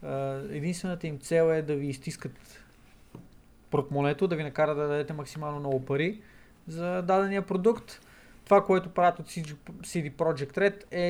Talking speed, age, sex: 145 wpm, 20-39, male